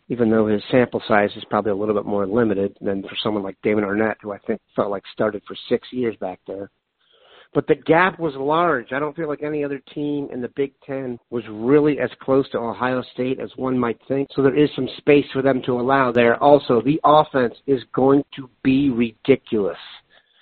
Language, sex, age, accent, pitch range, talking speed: English, male, 50-69, American, 115-135 Hz, 215 wpm